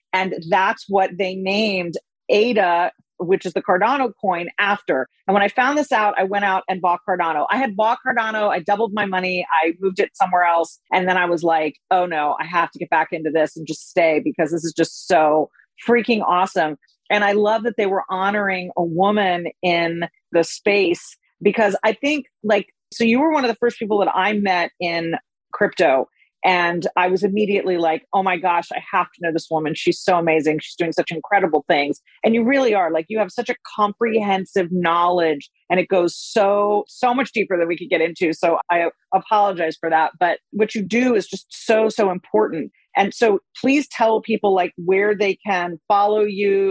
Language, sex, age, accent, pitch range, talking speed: English, female, 40-59, American, 170-210 Hz, 205 wpm